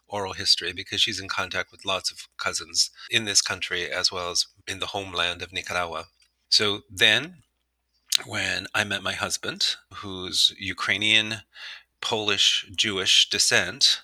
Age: 30-49